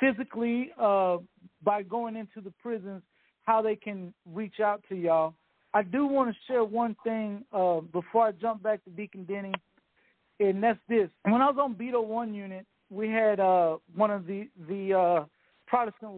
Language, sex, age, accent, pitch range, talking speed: English, male, 50-69, American, 185-235 Hz, 180 wpm